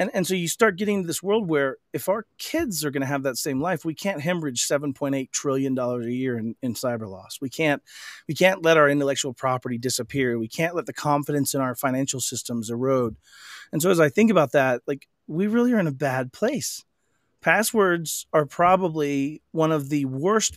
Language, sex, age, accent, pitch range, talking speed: English, male, 40-59, American, 130-185 Hz, 210 wpm